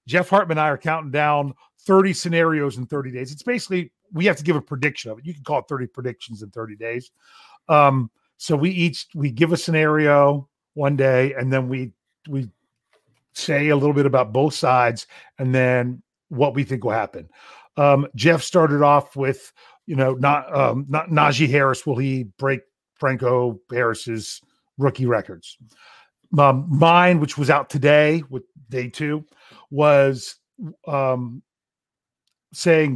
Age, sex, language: 40-59, male, English